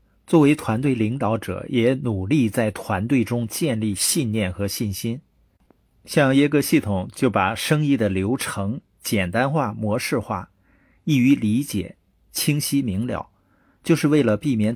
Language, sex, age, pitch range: Chinese, male, 50-69, 105-135 Hz